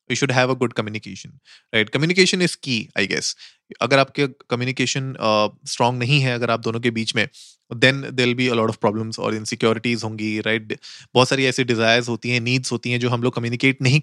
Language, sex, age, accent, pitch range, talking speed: Hindi, male, 30-49, native, 115-135 Hz, 200 wpm